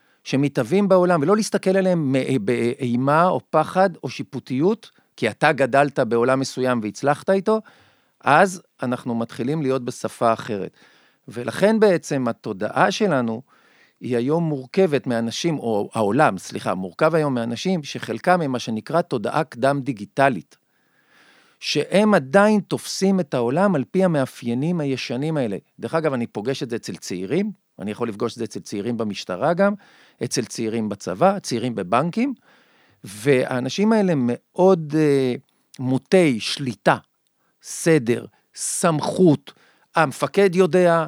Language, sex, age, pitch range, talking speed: Hebrew, male, 50-69, 120-170 Hz, 125 wpm